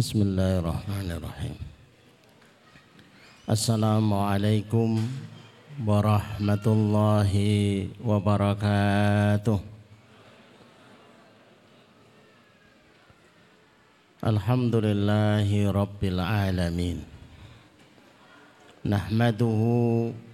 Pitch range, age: 105-115 Hz, 50-69